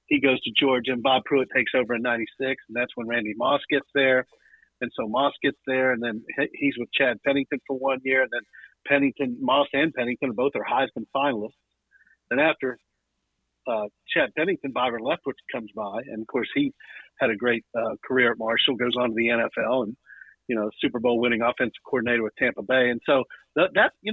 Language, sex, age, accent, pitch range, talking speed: English, male, 50-69, American, 120-145 Hz, 205 wpm